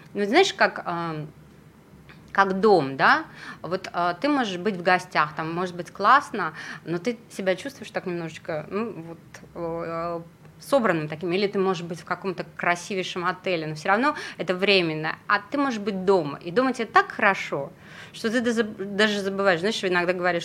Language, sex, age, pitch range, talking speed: Russian, female, 20-39, 180-225 Hz, 165 wpm